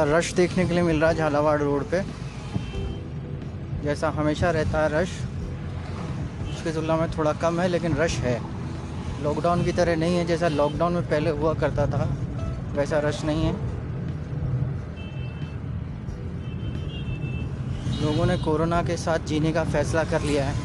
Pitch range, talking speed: 145-165 Hz, 150 wpm